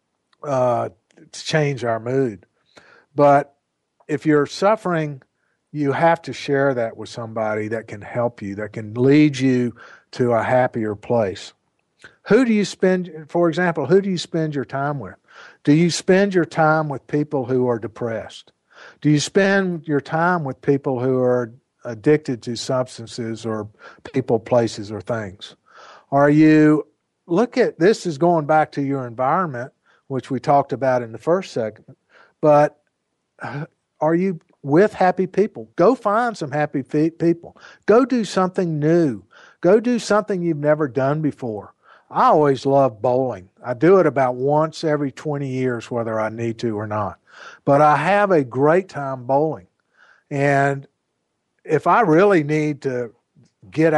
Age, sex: 50-69, male